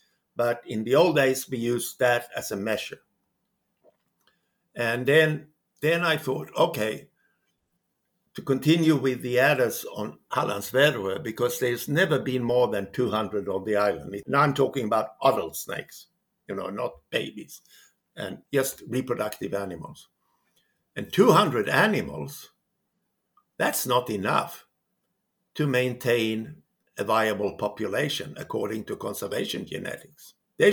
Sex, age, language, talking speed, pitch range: male, 60-79, English, 125 wpm, 120-150 Hz